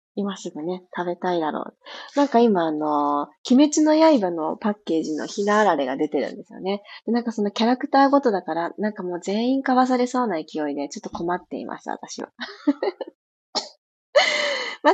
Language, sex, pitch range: Japanese, female, 200-290 Hz